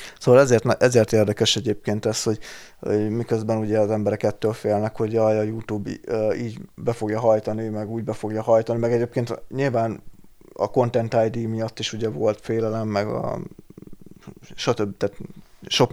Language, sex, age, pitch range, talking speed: Hungarian, male, 20-39, 105-120 Hz, 160 wpm